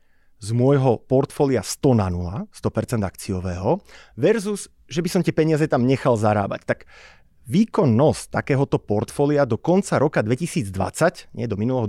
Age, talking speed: 30-49, 140 wpm